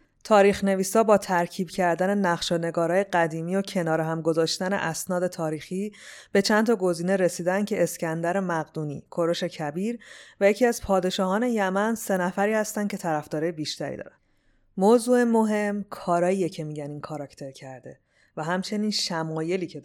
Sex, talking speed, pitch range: female, 145 wpm, 160-200 Hz